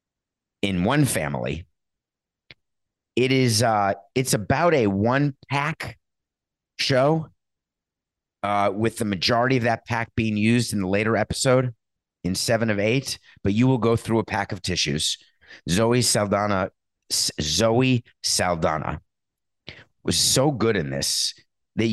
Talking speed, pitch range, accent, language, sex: 130 wpm, 95-125 Hz, American, English, male